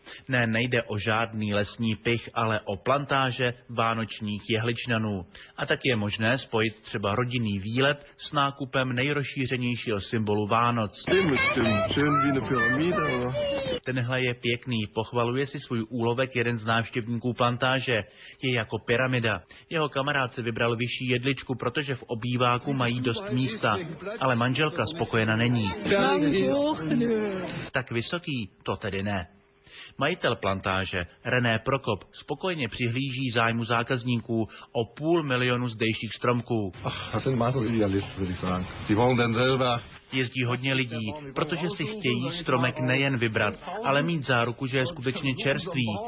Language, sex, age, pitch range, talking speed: Slovak, male, 30-49, 110-135 Hz, 115 wpm